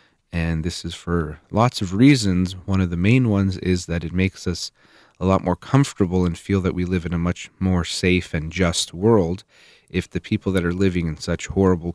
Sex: male